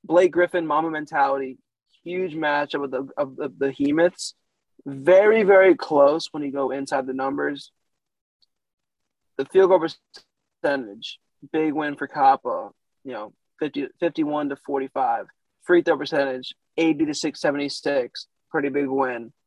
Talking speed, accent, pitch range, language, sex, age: 140 wpm, American, 135-165 Hz, English, male, 20-39